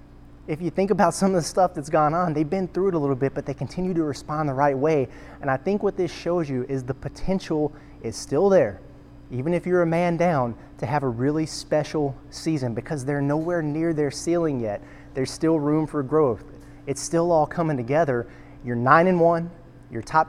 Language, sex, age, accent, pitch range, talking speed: English, male, 30-49, American, 135-165 Hz, 220 wpm